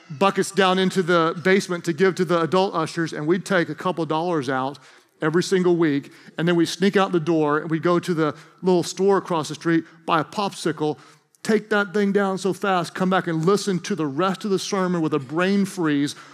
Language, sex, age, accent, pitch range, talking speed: English, male, 40-59, American, 135-180 Hz, 230 wpm